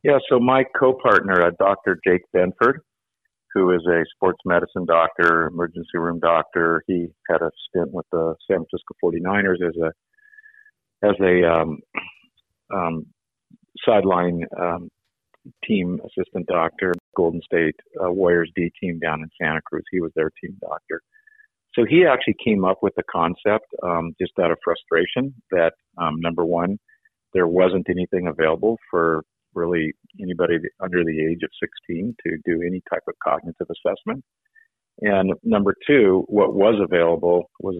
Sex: male